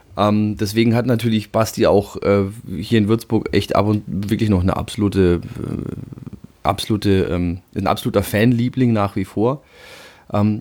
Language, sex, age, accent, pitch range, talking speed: German, male, 30-49, German, 105-130 Hz, 155 wpm